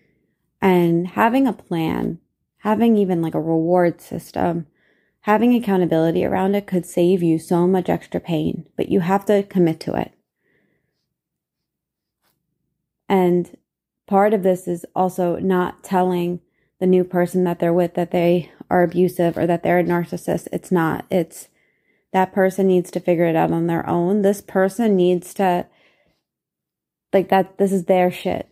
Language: English